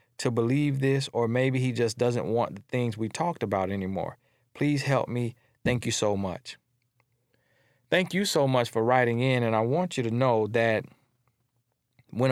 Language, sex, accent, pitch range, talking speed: English, male, American, 110-135 Hz, 180 wpm